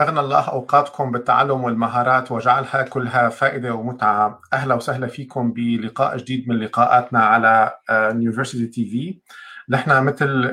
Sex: male